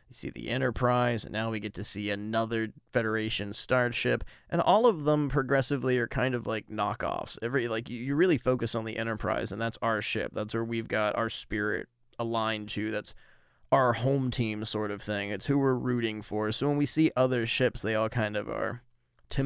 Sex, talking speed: male, 210 wpm